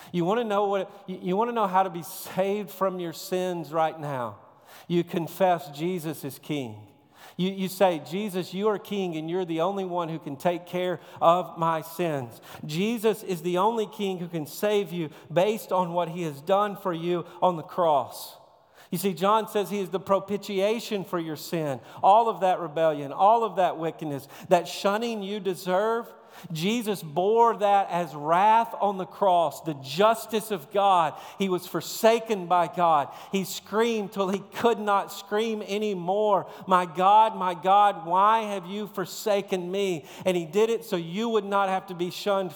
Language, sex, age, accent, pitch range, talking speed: English, male, 50-69, American, 175-210 Hz, 180 wpm